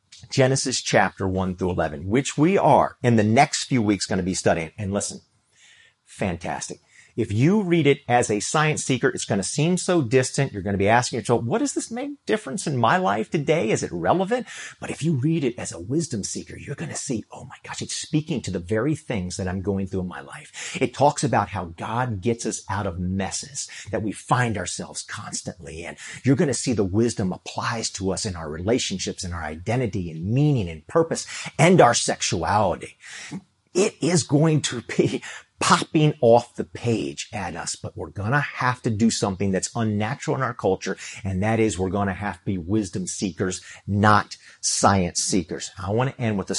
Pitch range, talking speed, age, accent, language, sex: 100-145 Hz, 205 wpm, 40-59, American, English, male